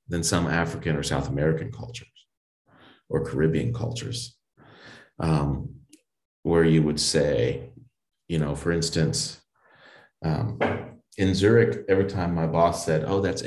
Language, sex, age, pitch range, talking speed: English, male, 30-49, 80-120 Hz, 130 wpm